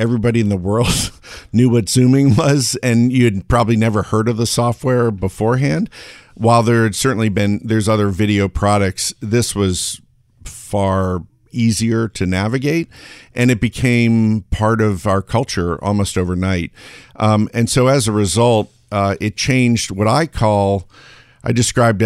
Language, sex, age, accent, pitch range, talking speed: English, male, 50-69, American, 100-120 Hz, 150 wpm